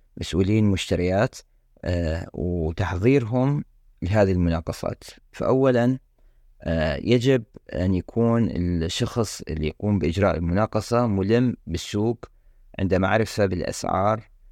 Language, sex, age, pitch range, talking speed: Arabic, male, 30-49, 90-110 Hz, 80 wpm